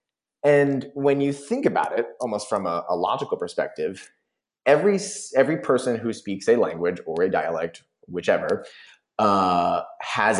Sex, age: male, 20-39